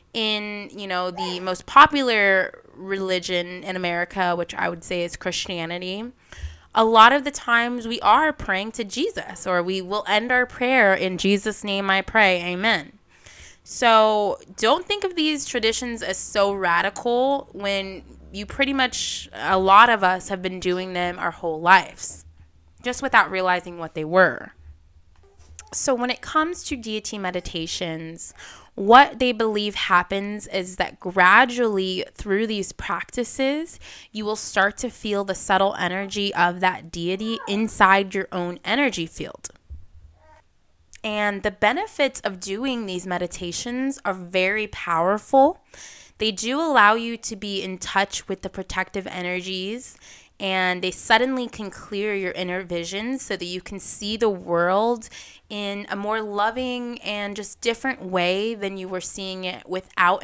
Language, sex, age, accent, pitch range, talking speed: English, female, 20-39, American, 180-225 Hz, 150 wpm